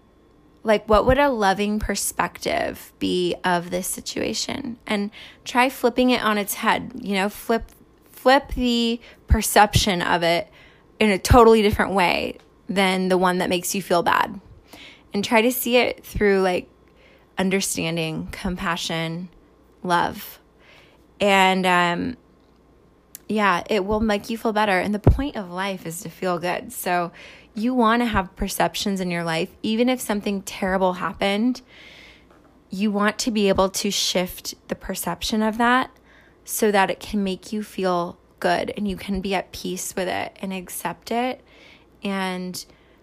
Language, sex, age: English, female, 20-39